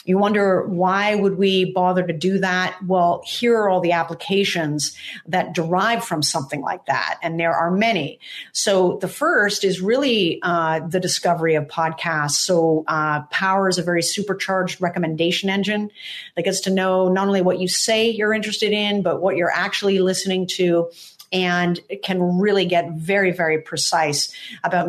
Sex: female